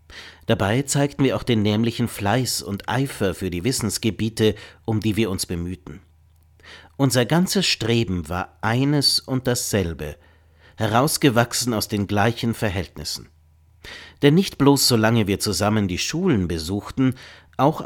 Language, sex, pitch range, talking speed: German, male, 85-125 Hz, 130 wpm